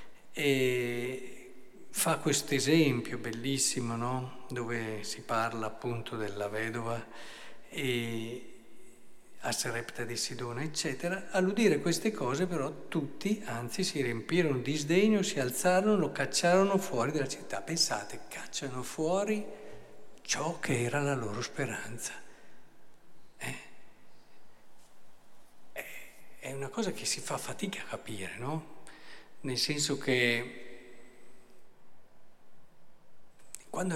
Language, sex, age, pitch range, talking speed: Italian, male, 50-69, 120-165 Hz, 105 wpm